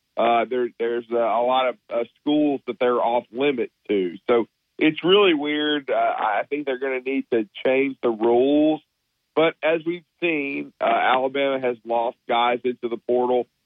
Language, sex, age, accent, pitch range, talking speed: English, male, 40-59, American, 120-140 Hz, 180 wpm